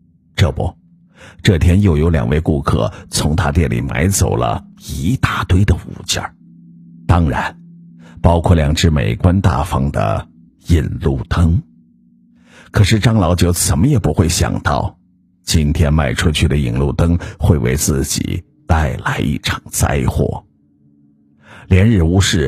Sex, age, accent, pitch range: male, 50-69, native, 75-105 Hz